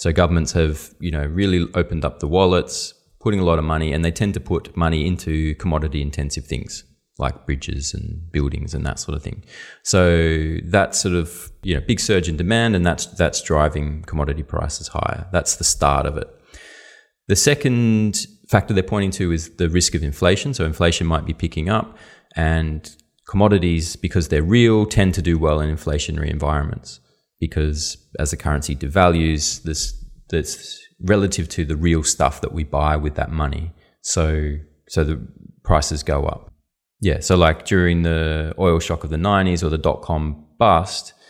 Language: English